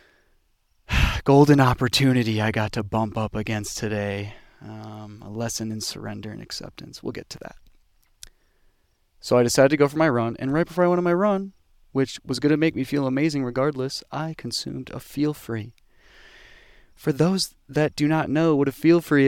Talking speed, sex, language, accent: 180 wpm, male, English, American